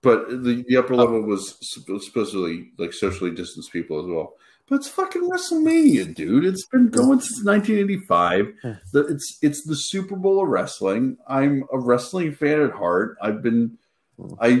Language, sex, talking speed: English, male, 150 wpm